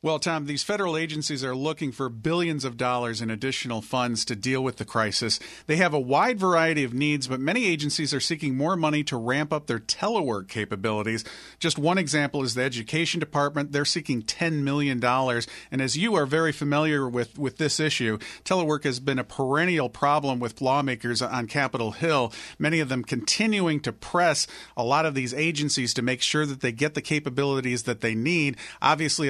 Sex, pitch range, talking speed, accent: male, 125-155 Hz, 195 wpm, American